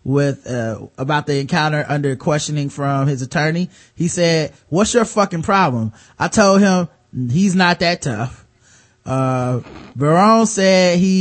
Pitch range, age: 145-190 Hz, 30-49